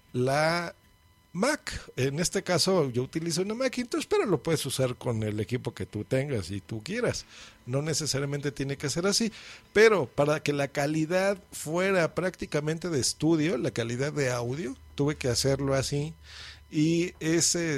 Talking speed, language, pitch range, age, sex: 160 wpm, Spanish, 125-175 Hz, 50-69, male